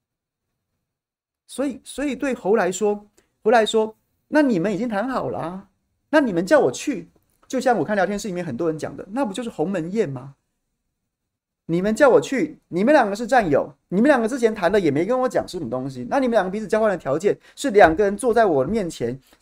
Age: 30-49